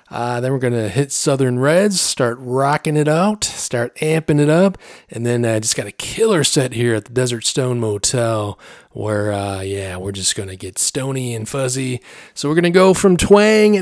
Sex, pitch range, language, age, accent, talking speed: male, 120-175 Hz, English, 30-49, American, 210 wpm